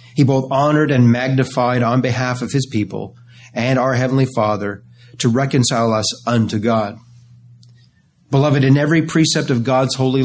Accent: American